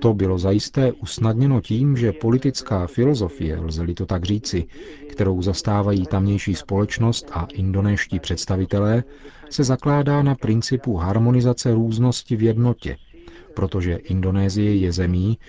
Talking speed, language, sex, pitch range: 120 wpm, Czech, male, 95-115 Hz